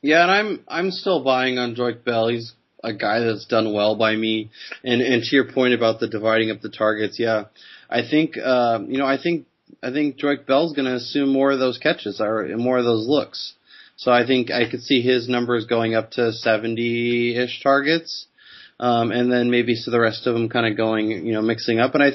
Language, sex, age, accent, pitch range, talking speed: English, male, 20-39, American, 110-130 Hz, 220 wpm